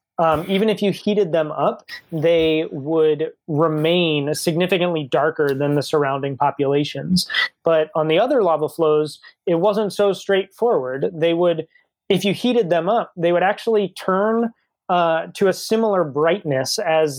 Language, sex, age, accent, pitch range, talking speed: English, male, 30-49, American, 145-175 Hz, 150 wpm